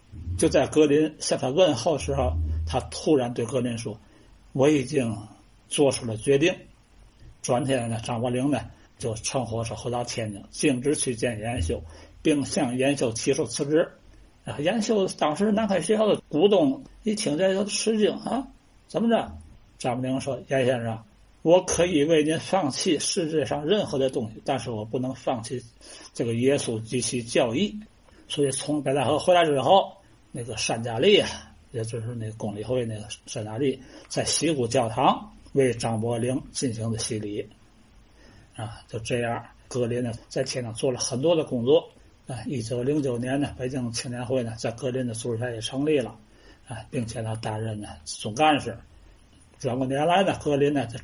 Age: 60-79